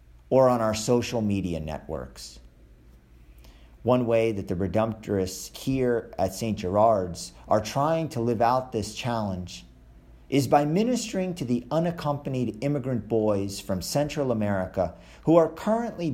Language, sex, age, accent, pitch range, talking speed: English, male, 50-69, American, 95-140 Hz, 135 wpm